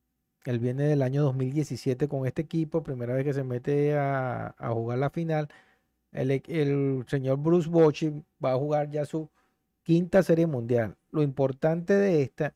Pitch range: 125-155 Hz